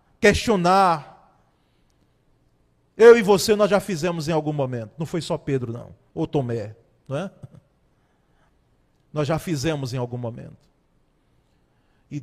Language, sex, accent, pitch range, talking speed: Portuguese, male, Brazilian, 140-205 Hz, 130 wpm